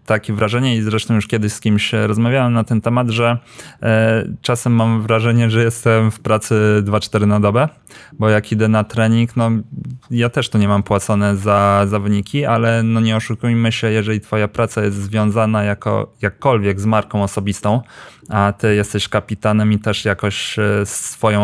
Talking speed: 170 wpm